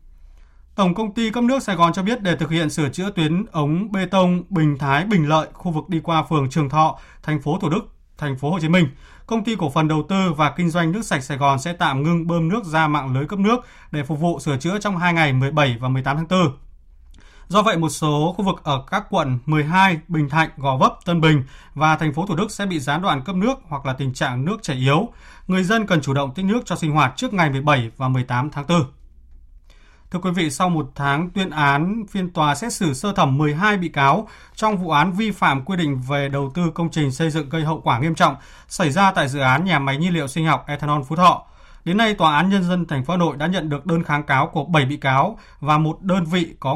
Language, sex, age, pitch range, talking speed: Vietnamese, male, 20-39, 145-185 Hz, 255 wpm